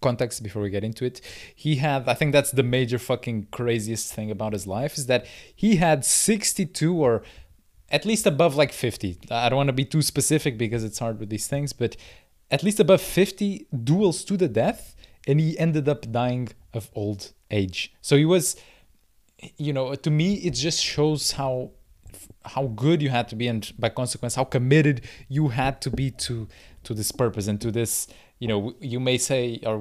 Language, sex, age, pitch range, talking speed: English, male, 20-39, 110-150 Hz, 200 wpm